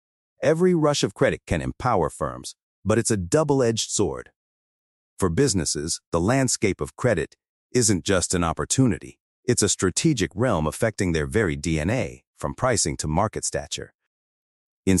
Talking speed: 150 wpm